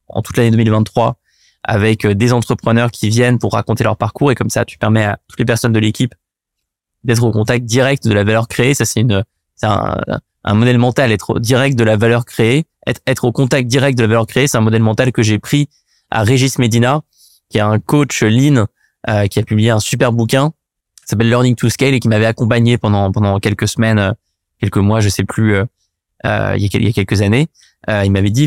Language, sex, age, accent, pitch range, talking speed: French, male, 20-39, French, 105-130 Hz, 225 wpm